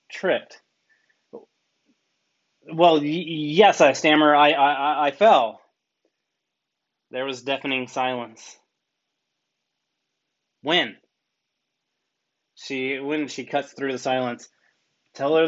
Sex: male